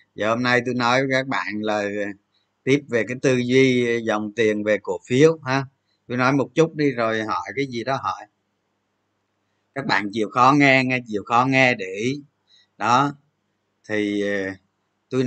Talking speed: 175 wpm